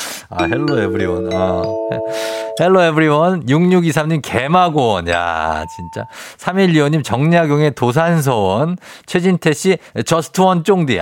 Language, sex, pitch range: Korean, male, 110-180 Hz